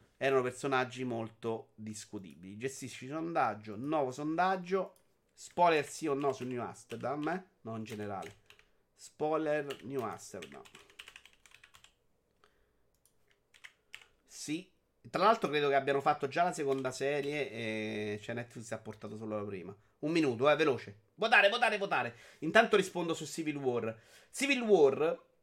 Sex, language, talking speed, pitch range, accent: male, Italian, 125 wpm, 130-170 Hz, native